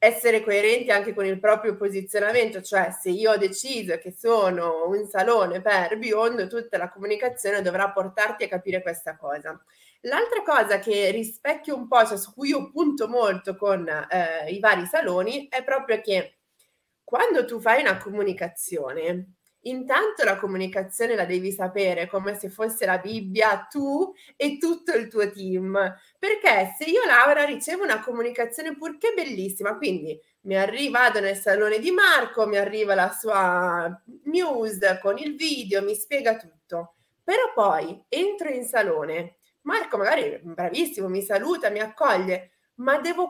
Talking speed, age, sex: 155 wpm, 20-39, female